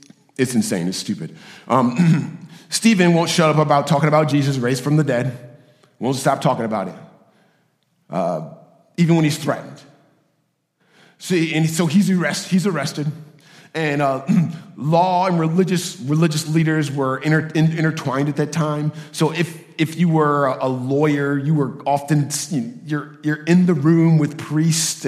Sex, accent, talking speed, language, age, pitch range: male, American, 165 wpm, English, 40-59, 135-170 Hz